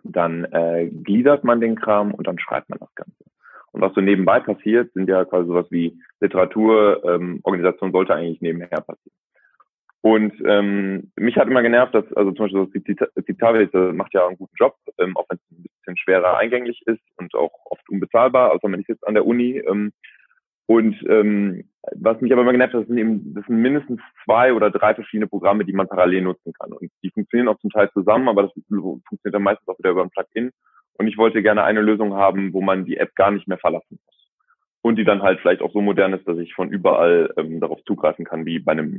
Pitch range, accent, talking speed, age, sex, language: 95-120 Hz, German, 220 wpm, 20-39, male, German